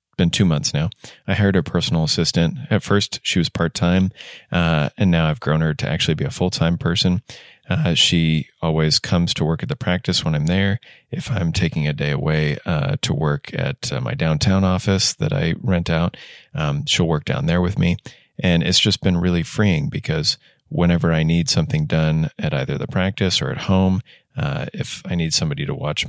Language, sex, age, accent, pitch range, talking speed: English, male, 30-49, American, 80-105 Hz, 210 wpm